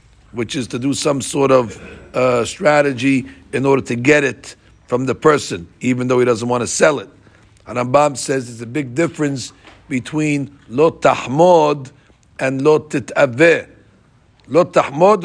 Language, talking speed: English, 155 wpm